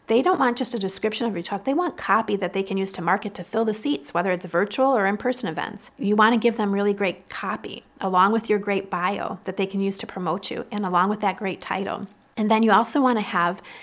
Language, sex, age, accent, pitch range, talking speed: English, female, 30-49, American, 185-220 Hz, 265 wpm